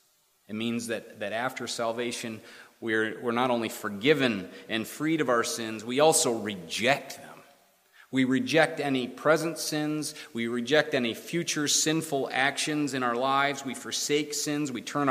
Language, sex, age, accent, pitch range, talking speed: English, male, 30-49, American, 120-155 Hz, 155 wpm